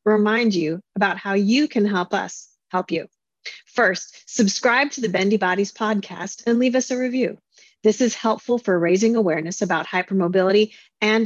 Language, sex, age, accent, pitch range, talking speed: English, female, 40-59, American, 185-230 Hz, 165 wpm